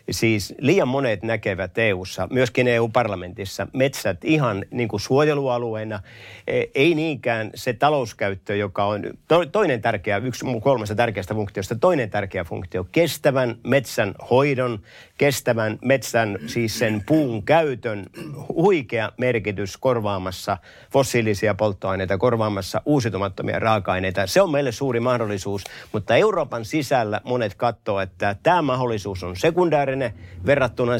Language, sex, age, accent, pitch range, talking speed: Finnish, male, 50-69, native, 100-130 Hz, 115 wpm